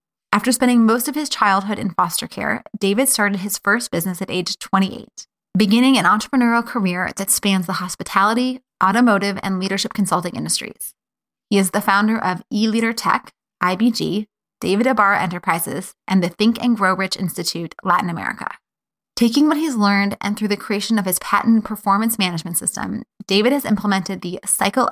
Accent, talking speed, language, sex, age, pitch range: American, 170 wpm, English, female, 20-39, 190-225 Hz